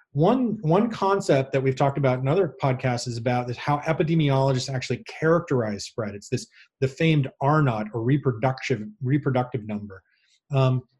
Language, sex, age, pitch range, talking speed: English, male, 30-49, 120-150 Hz, 160 wpm